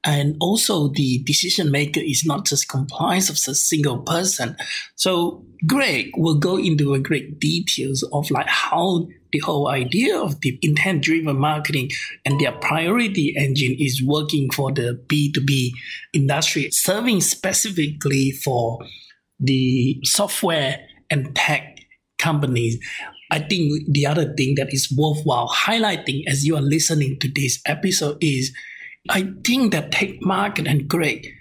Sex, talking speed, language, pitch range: male, 140 wpm, English, 140-170 Hz